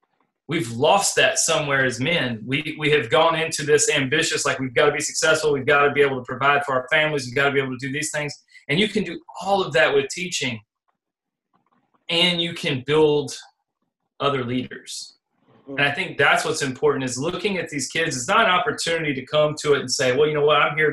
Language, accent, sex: English, American, male